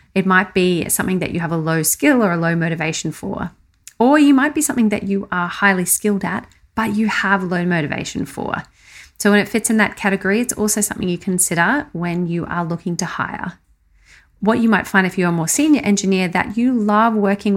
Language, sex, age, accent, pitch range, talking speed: English, female, 40-59, Australian, 175-225 Hz, 220 wpm